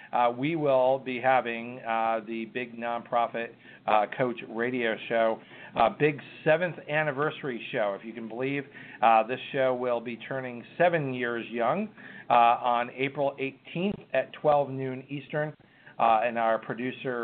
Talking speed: 150 wpm